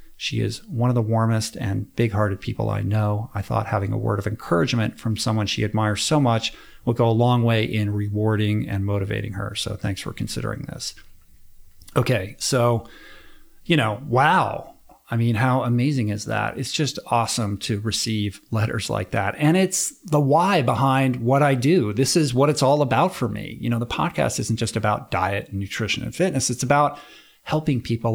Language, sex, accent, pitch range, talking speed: English, male, American, 105-125 Hz, 190 wpm